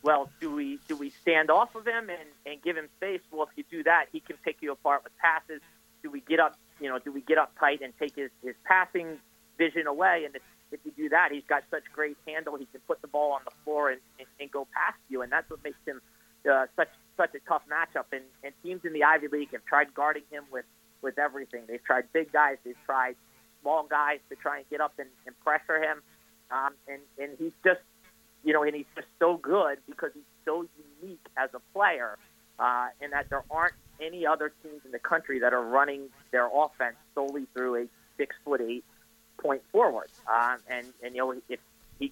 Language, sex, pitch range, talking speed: English, male, 135-160 Hz, 230 wpm